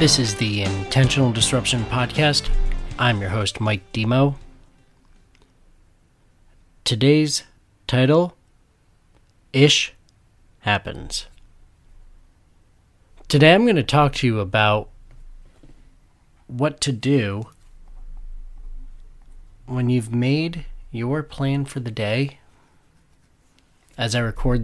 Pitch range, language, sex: 95-125 Hz, English, male